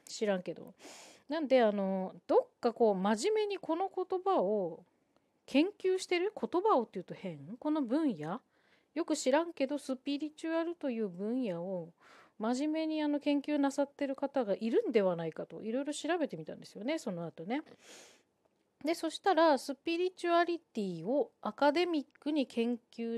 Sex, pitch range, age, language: female, 210-300 Hz, 40-59, Japanese